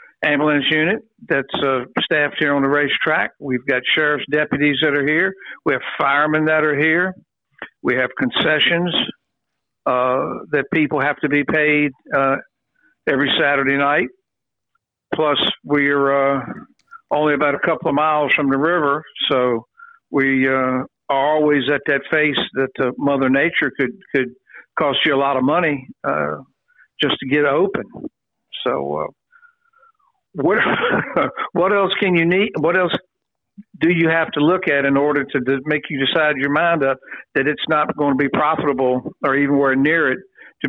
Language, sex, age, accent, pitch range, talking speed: English, male, 60-79, American, 135-160 Hz, 165 wpm